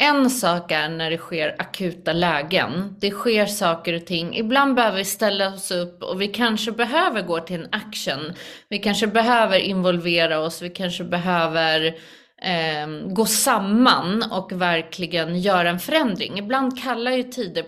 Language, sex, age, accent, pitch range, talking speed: Swedish, female, 30-49, native, 175-225 Hz, 160 wpm